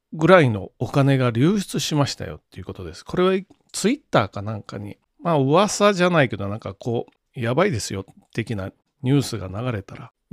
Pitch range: 115-180 Hz